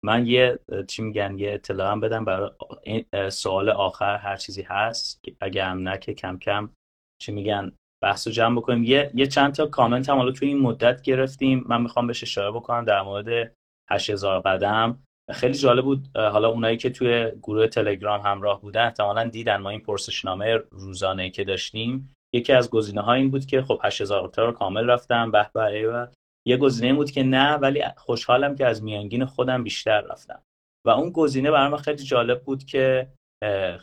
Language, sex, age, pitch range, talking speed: Persian, male, 30-49, 105-130 Hz, 175 wpm